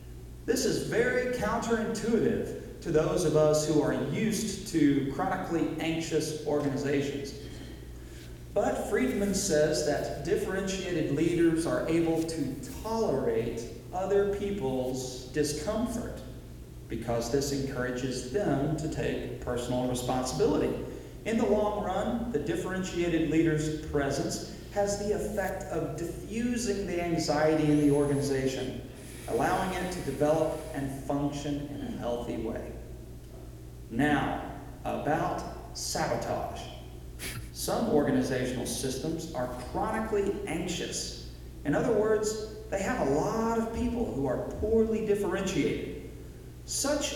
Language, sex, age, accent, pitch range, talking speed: English, male, 40-59, American, 130-195 Hz, 110 wpm